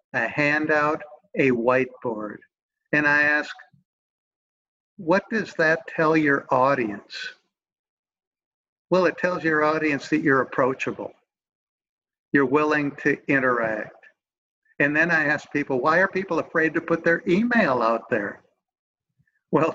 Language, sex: English, male